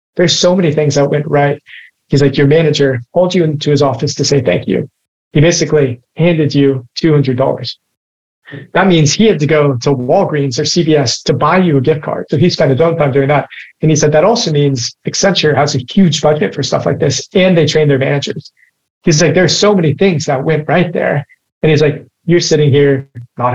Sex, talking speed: male, 220 wpm